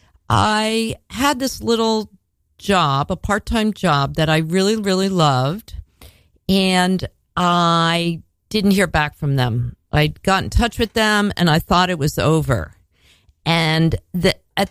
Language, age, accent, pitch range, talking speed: English, 50-69, American, 145-200 Hz, 140 wpm